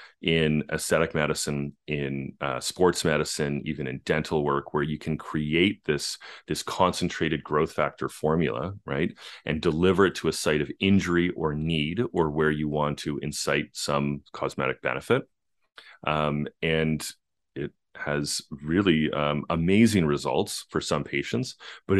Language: English